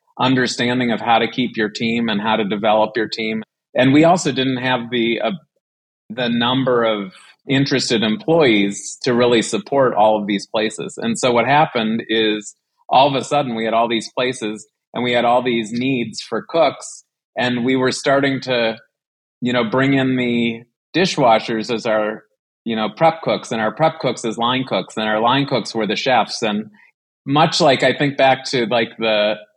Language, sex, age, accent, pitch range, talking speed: English, male, 30-49, American, 110-130 Hz, 190 wpm